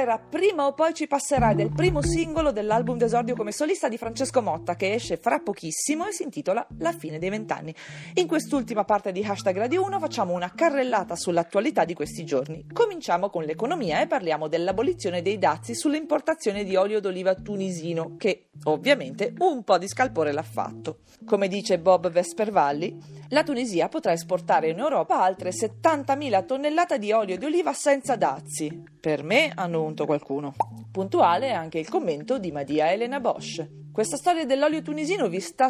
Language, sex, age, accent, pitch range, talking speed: Italian, female, 40-59, native, 170-280 Hz, 165 wpm